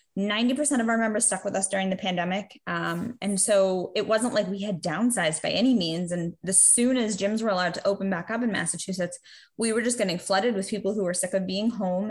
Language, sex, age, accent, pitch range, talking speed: English, female, 20-39, American, 190-225 Hz, 235 wpm